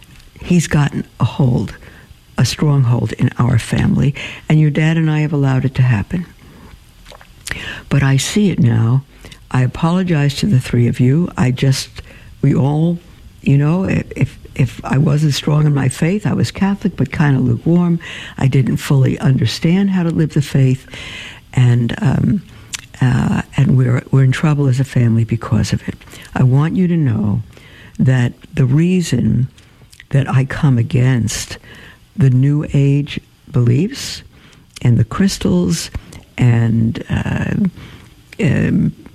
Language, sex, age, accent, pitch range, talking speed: English, female, 60-79, American, 120-155 Hz, 150 wpm